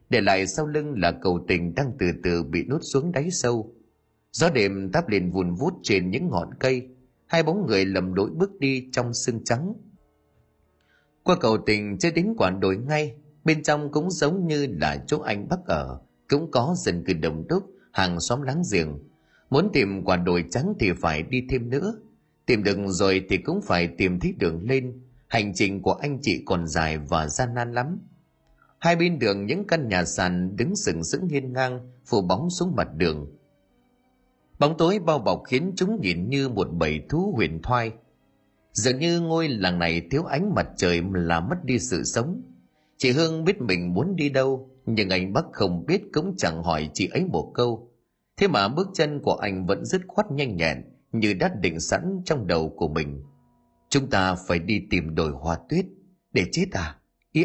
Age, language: 30-49, Vietnamese